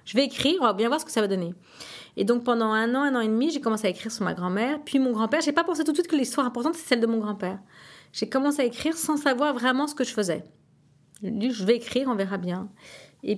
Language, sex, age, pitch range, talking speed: French, female, 40-59, 185-240 Hz, 285 wpm